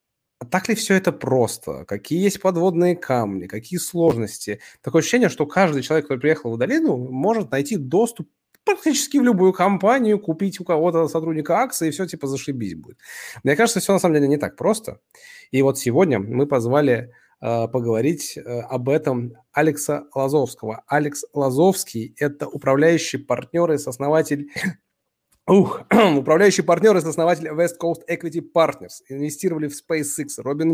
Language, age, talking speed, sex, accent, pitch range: Russian, 20-39, 155 wpm, male, native, 125-170 Hz